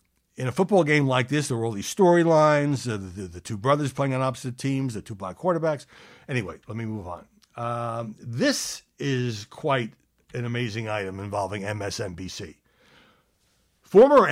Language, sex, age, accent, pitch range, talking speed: English, male, 60-79, American, 105-150 Hz, 160 wpm